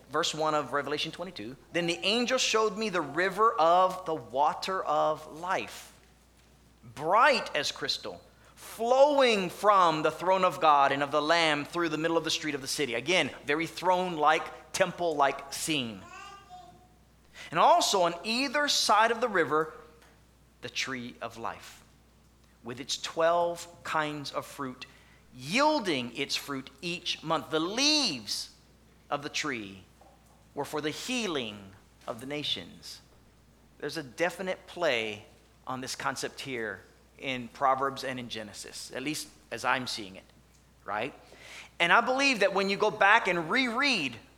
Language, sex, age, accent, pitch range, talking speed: English, male, 30-49, American, 150-220 Hz, 145 wpm